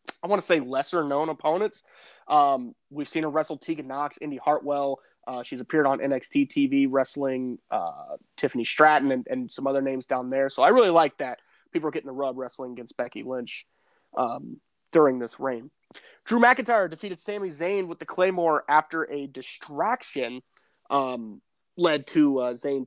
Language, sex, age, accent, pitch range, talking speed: English, male, 20-39, American, 130-185 Hz, 175 wpm